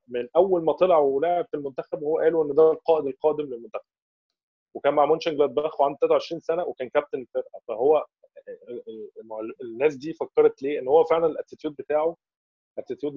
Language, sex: Arabic, male